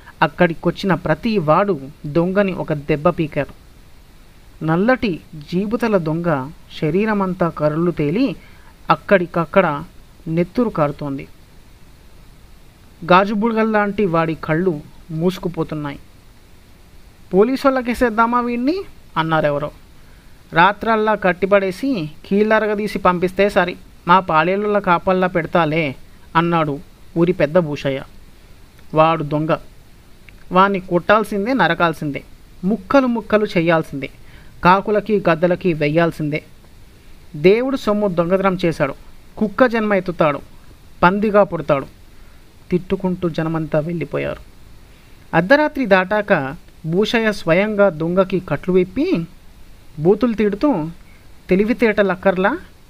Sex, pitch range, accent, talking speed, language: male, 155-205 Hz, native, 85 wpm, Telugu